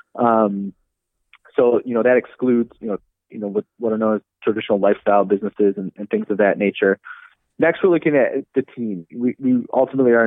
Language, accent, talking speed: English, American, 195 wpm